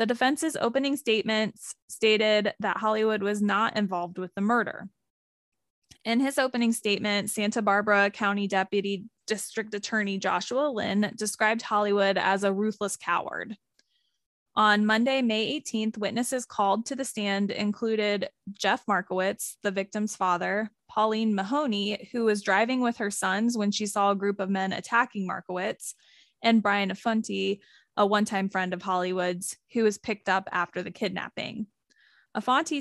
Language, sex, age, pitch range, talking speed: English, female, 20-39, 195-225 Hz, 145 wpm